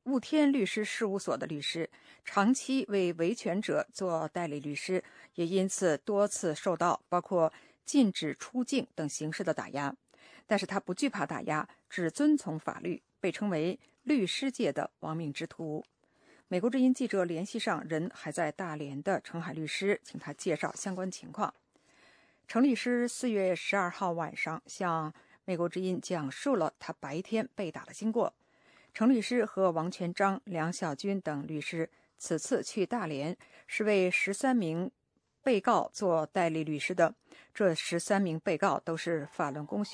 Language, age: English, 50-69